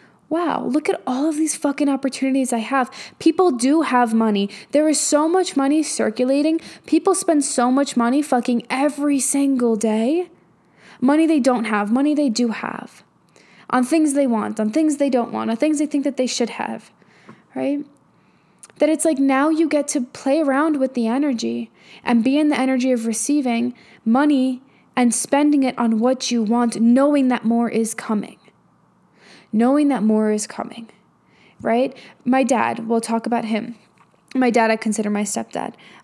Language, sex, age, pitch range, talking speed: English, female, 10-29, 220-280 Hz, 175 wpm